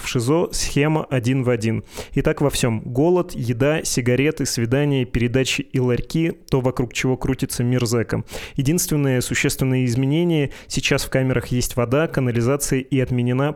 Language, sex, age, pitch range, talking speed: Russian, male, 20-39, 120-140 Hz, 150 wpm